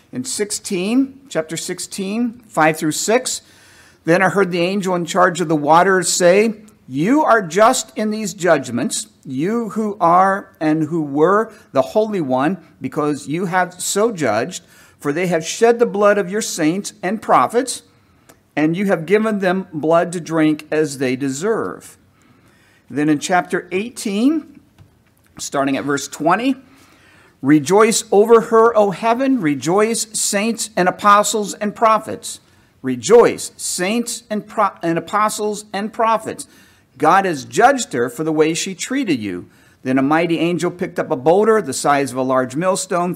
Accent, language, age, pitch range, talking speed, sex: American, English, 50-69, 155-215 Hz, 155 wpm, male